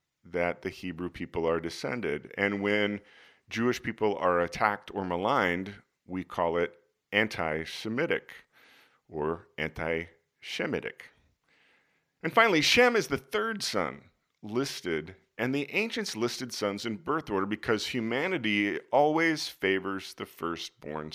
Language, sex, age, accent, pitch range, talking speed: English, male, 40-59, American, 90-125 Hz, 120 wpm